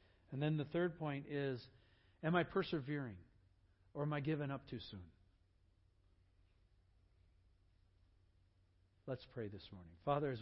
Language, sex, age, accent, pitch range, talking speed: English, male, 50-69, American, 95-135 Hz, 125 wpm